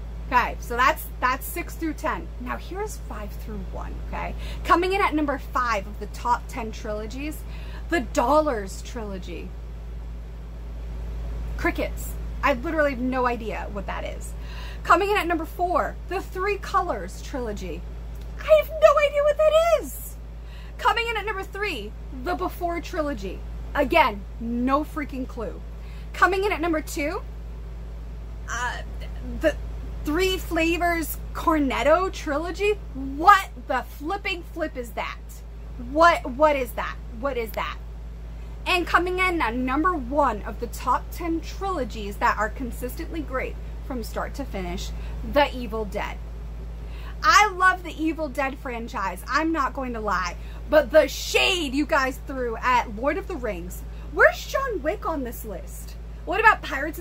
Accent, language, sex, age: American, English, female, 30-49